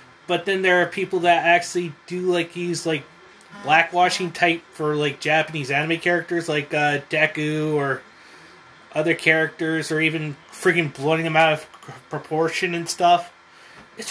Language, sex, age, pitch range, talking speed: English, male, 20-39, 155-215 Hz, 150 wpm